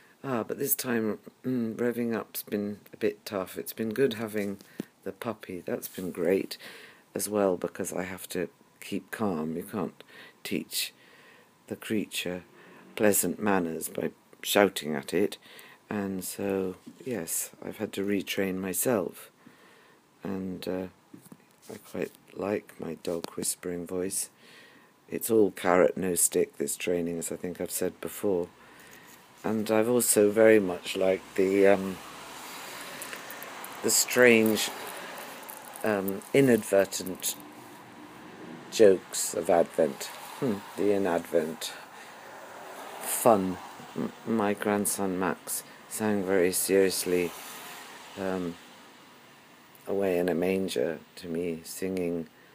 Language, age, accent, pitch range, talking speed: English, 50-69, British, 90-110 Hz, 120 wpm